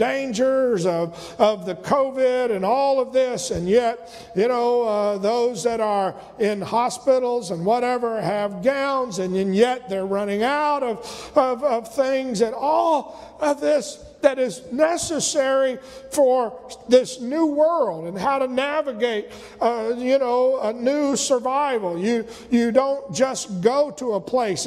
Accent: American